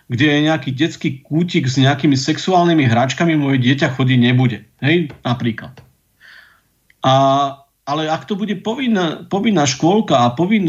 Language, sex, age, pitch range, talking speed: Slovak, male, 50-69, 135-175 Hz, 140 wpm